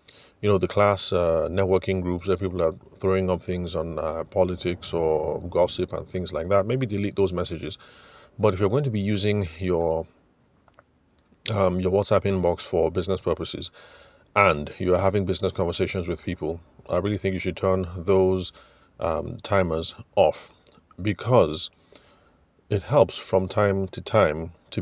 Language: English